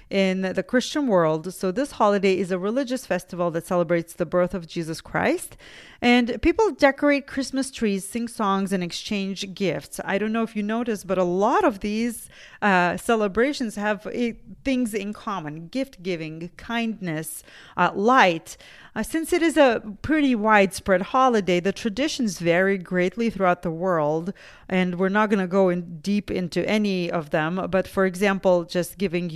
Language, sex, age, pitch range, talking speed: English, female, 30-49, 180-225 Hz, 170 wpm